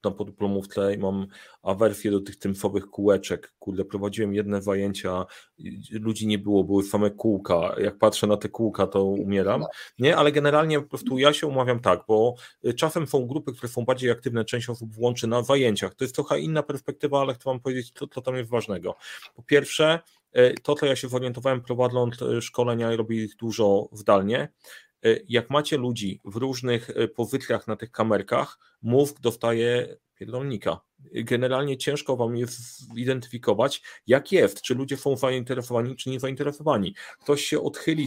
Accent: native